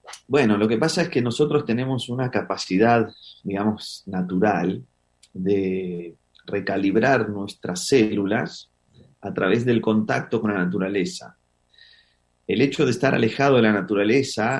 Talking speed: 125 wpm